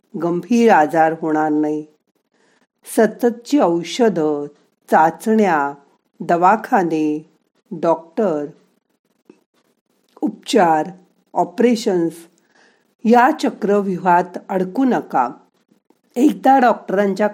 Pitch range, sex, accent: 180-230 Hz, female, native